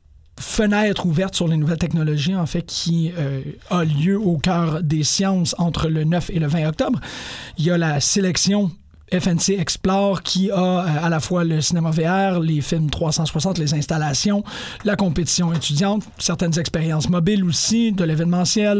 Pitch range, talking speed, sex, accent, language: 160-195 Hz, 165 wpm, male, Canadian, French